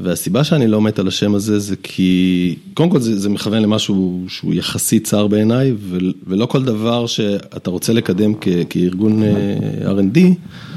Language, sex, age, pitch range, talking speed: Hebrew, male, 30-49, 95-115 Hz, 155 wpm